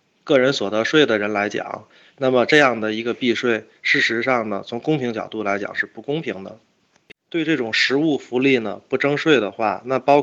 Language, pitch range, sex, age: Chinese, 110-140 Hz, male, 20-39